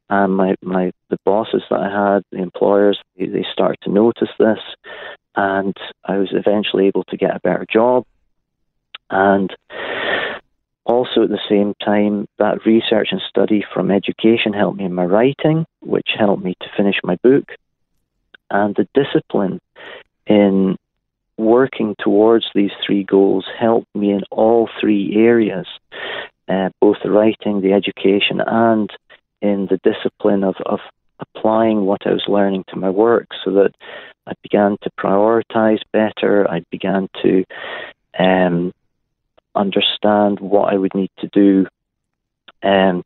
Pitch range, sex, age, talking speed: 95-110 Hz, male, 40-59, 145 wpm